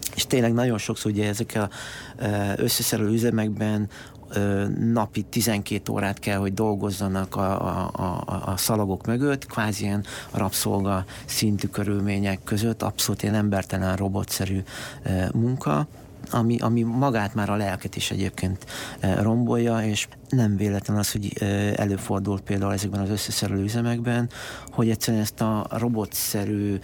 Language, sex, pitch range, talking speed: Hungarian, male, 100-120 Hz, 125 wpm